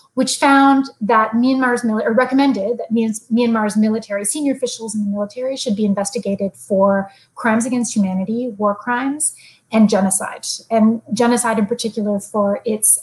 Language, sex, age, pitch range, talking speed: English, female, 30-49, 210-260 Hz, 145 wpm